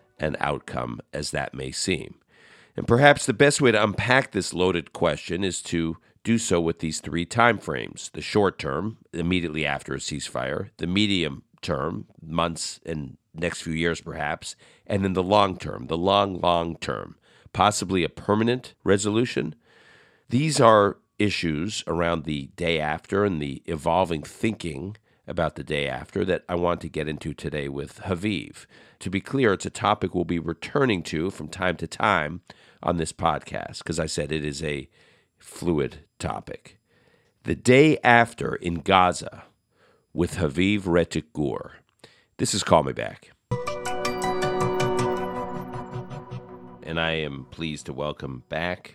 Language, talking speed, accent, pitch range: English, 150 wpm, American, 75-100 Hz